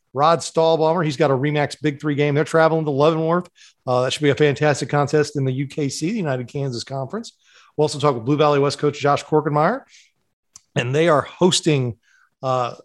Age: 40-59